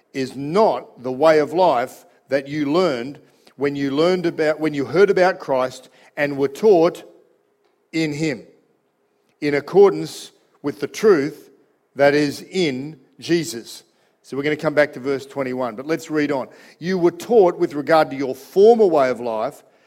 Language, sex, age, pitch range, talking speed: English, male, 50-69, 140-185 Hz, 170 wpm